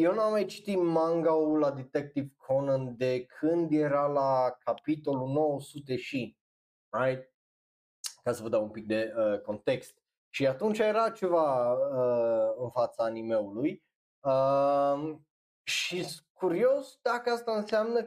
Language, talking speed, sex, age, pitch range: Romanian, 135 wpm, male, 20-39, 135-210 Hz